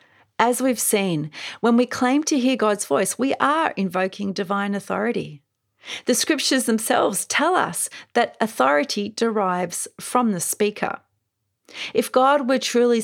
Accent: Australian